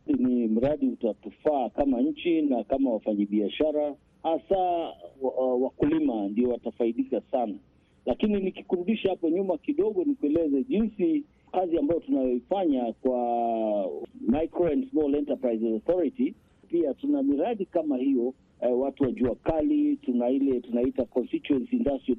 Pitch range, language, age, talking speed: 125-165 Hz, Swahili, 50-69, 120 wpm